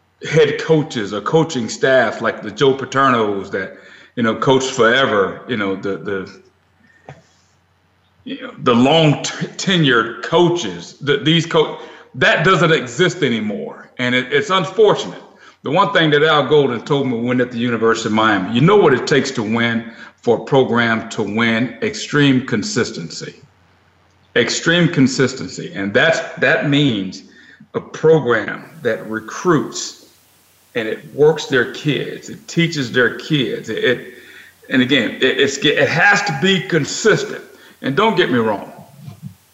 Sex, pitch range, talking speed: male, 115-165 Hz, 145 wpm